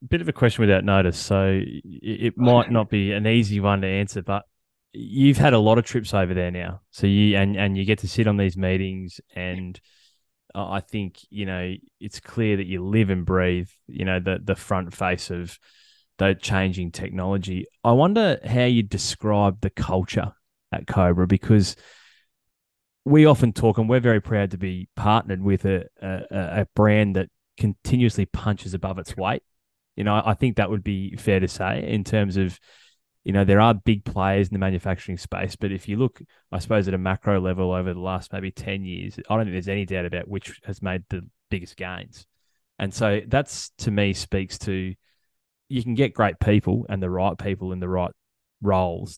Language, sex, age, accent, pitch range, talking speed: English, male, 20-39, Australian, 95-110 Hz, 200 wpm